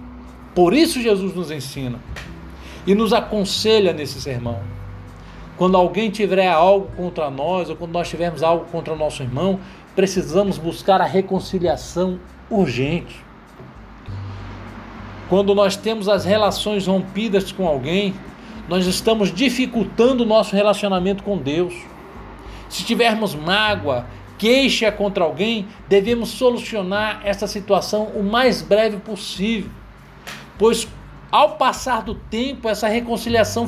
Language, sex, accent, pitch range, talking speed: Portuguese, male, Brazilian, 160-220 Hz, 120 wpm